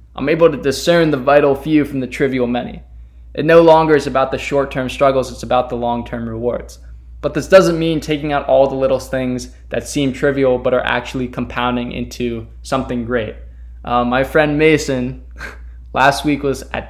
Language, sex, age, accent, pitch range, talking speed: English, male, 20-39, American, 120-140 Hz, 185 wpm